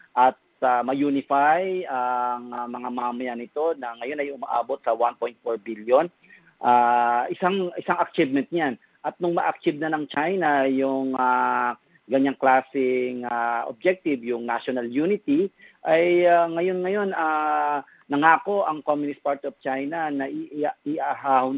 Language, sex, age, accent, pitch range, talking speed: Filipino, male, 40-59, native, 130-155 Hz, 130 wpm